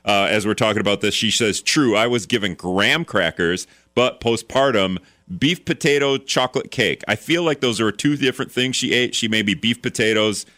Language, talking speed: English, 200 wpm